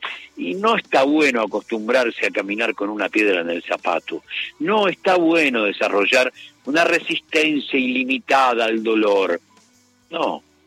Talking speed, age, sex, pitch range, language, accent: 130 wpm, 50-69, male, 130-190 Hz, Spanish, Argentinian